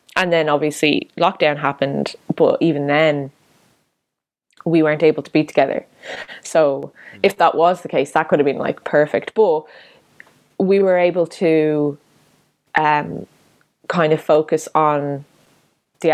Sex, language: female, German